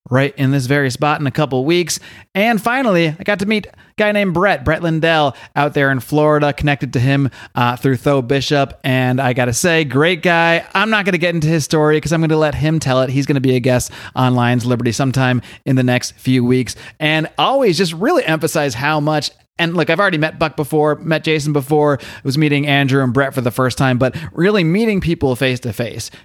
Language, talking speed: English, 230 wpm